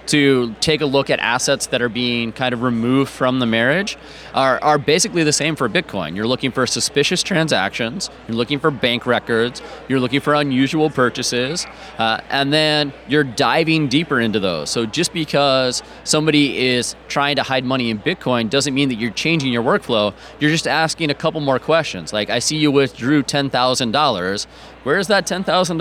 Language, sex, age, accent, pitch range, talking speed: English, male, 30-49, American, 125-155 Hz, 195 wpm